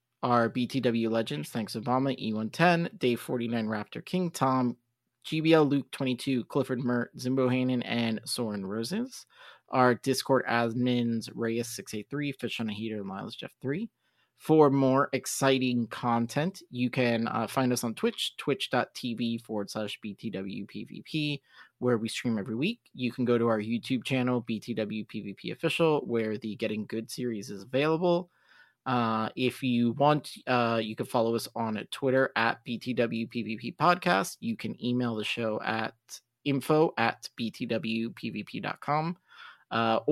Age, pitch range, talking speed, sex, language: 30-49, 115-135 Hz, 135 wpm, male, English